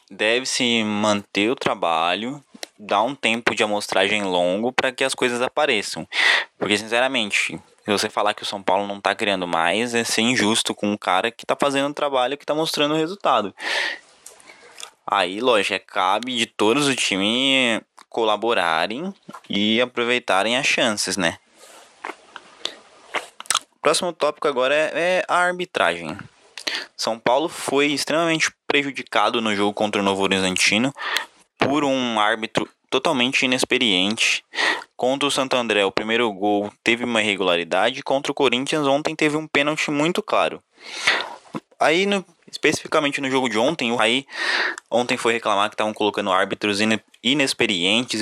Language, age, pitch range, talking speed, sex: Portuguese, 10-29, 105-145 Hz, 145 wpm, male